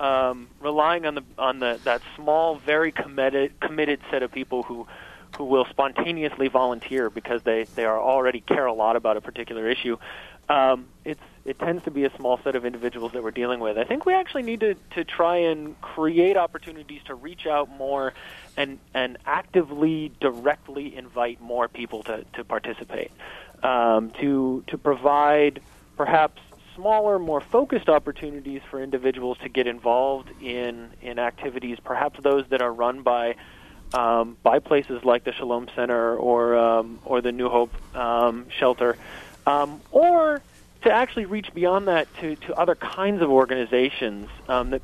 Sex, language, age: male, English, 30-49